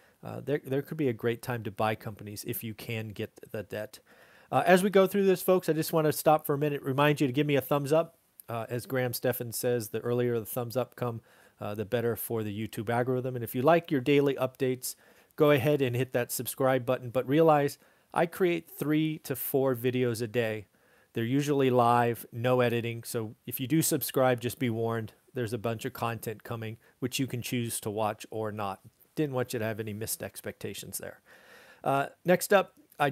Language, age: English, 40-59